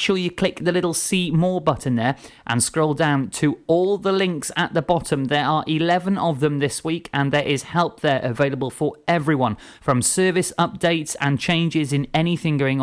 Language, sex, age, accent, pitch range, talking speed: English, male, 30-49, British, 125-170 Hz, 195 wpm